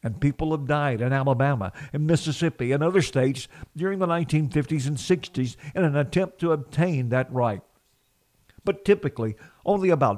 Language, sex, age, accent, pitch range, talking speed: English, male, 50-69, American, 130-165 Hz, 160 wpm